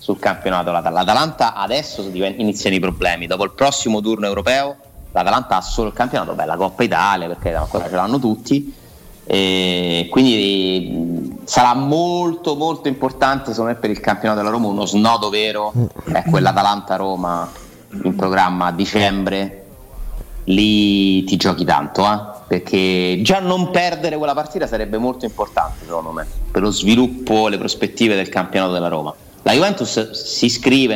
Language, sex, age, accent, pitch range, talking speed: Italian, male, 30-49, native, 95-115 Hz, 150 wpm